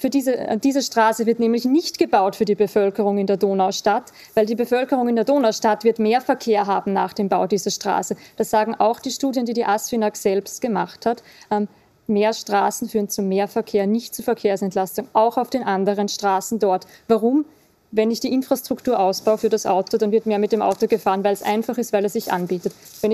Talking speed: 205 wpm